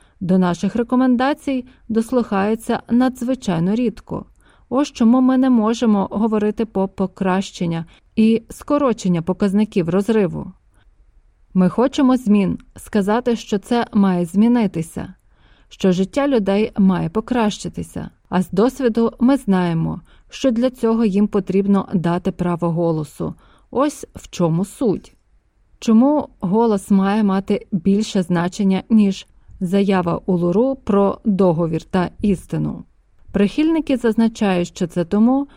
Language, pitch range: Ukrainian, 185-240 Hz